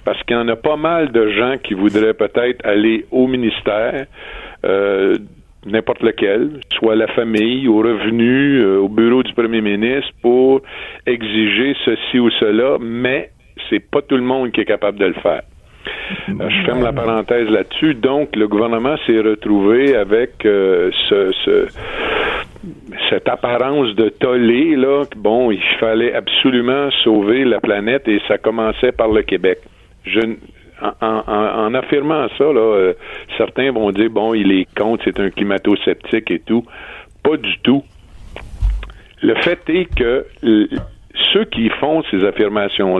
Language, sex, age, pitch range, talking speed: French, male, 50-69, 110-150 Hz, 160 wpm